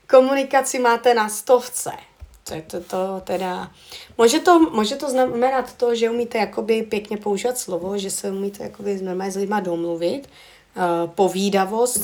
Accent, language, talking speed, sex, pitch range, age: native, Czech, 135 wpm, female, 185-235 Hz, 30-49